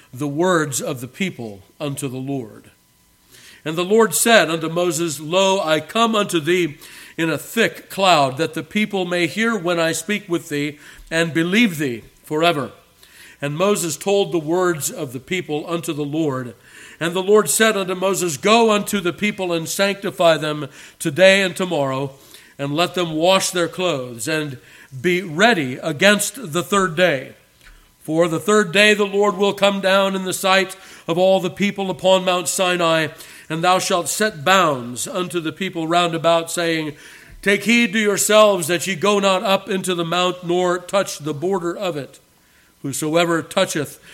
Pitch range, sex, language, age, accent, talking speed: 155-190 Hz, male, English, 50-69, American, 175 wpm